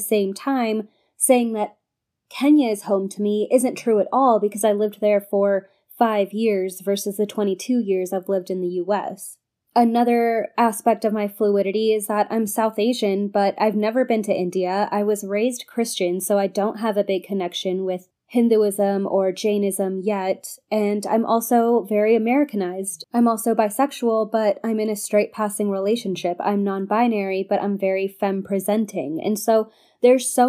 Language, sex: English, female